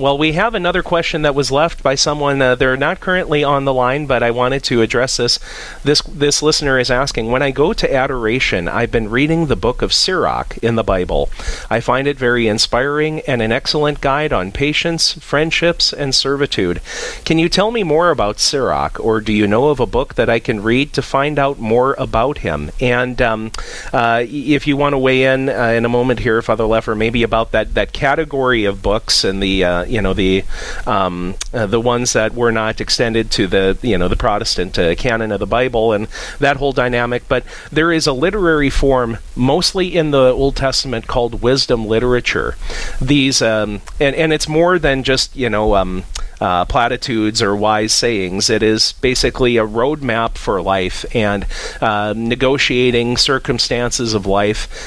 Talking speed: 190 wpm